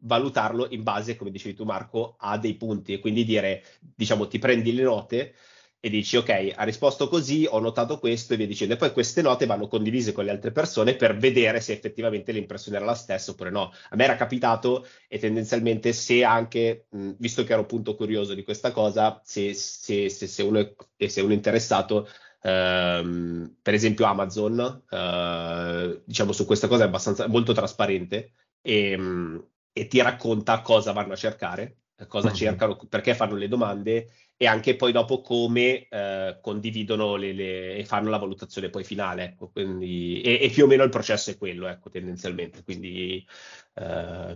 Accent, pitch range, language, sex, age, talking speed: native, 100-120 Hz, Italian, male, 30-49, 180 wpm